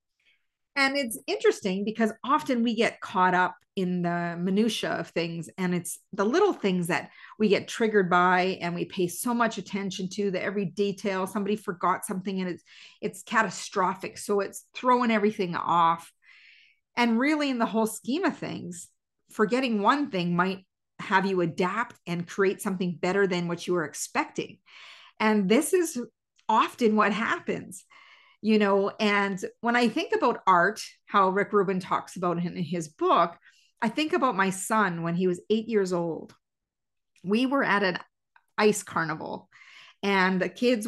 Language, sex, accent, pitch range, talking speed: English, female, American, 180-235 Hz, 165 wpm